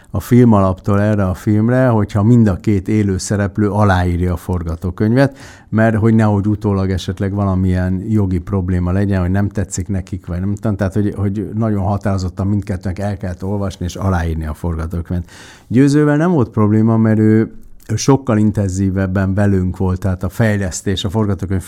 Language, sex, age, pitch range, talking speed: Hungarian, male, 60-79, 95-115 Hz, 160 wpm